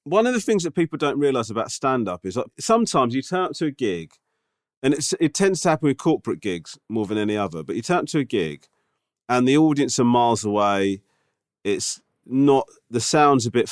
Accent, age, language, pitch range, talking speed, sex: British, 40-59, English, 105-145 Hz, 225 wpm, male